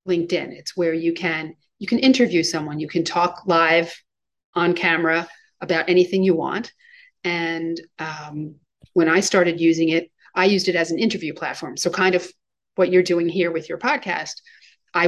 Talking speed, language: 175 wpm, English